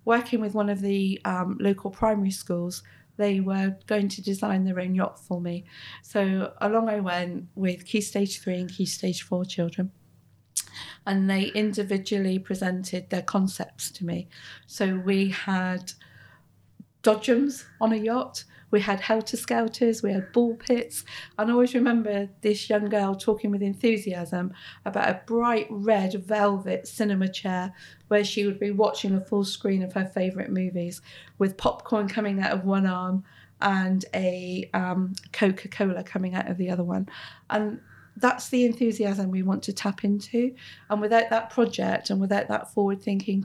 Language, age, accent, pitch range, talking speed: English, 40-59, British, 190-220 Hz, 160 wpm